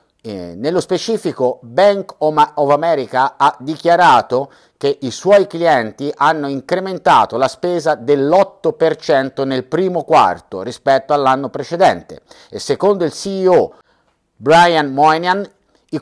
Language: Italian